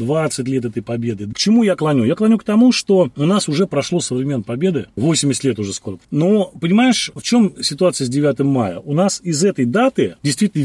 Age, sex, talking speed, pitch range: 30-49, male, 210 wpm, 130-185 Hz